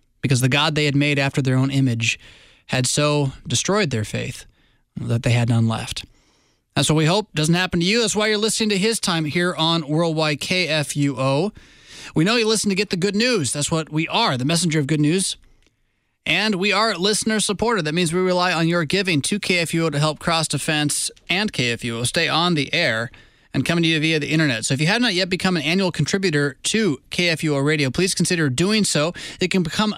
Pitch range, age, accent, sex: 145-185 Hz, 20-39, American, male